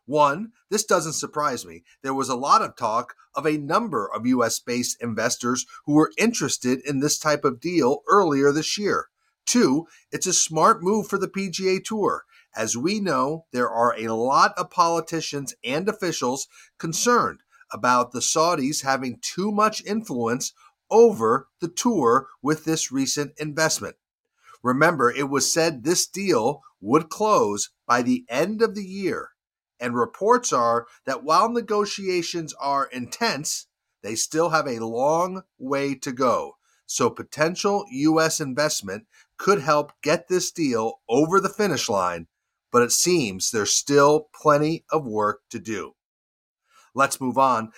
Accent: American